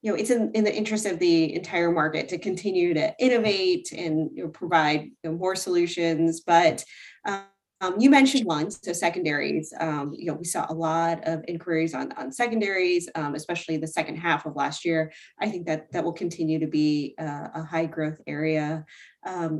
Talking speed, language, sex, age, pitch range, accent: 185 wpm, English, female, 20-39, 155-195 Hz, American